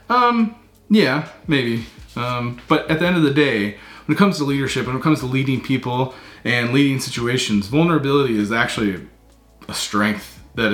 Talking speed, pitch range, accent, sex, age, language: 175 wpm, 105-155 Hz, American, male, 30-49, English